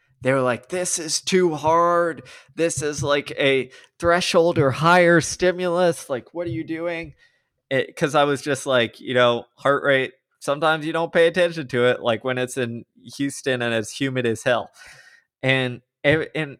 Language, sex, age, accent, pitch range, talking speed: English, male, 20-39, American, 115-155 Hz, 175 wpm